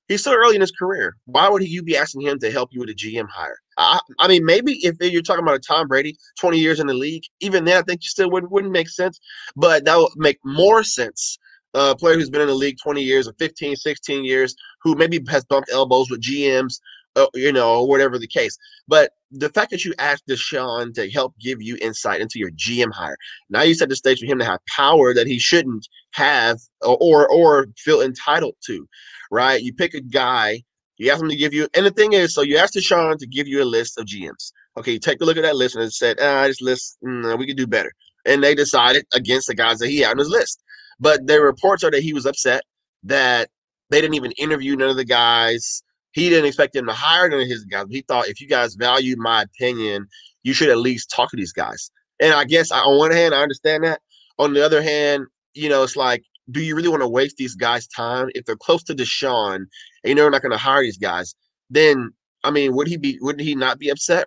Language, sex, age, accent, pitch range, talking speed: English, male, 20-39, American, 130-180 Hz, 245 wpm